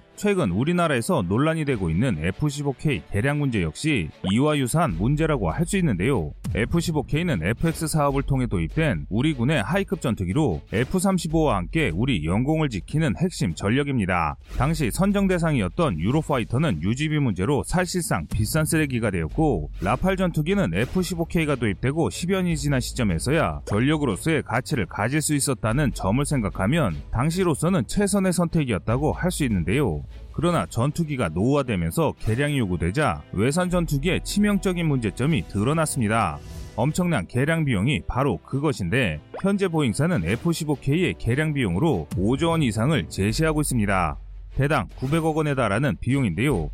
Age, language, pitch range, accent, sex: 30-49, Korean, 115-165 Hz, native, male